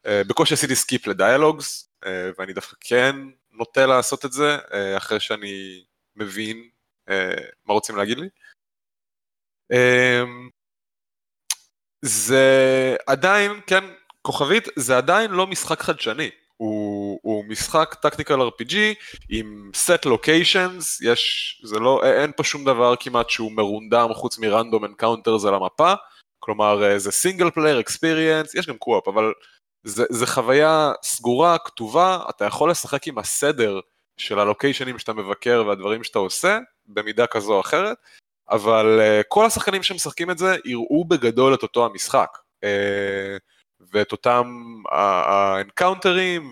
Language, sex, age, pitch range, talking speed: Hebrew, male, 20-39, 105-160 Hz, 125 wpm